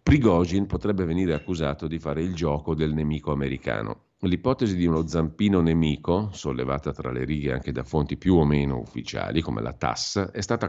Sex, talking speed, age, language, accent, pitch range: male, 180 wpm, 50-69, Italian, native, 70-90 Hz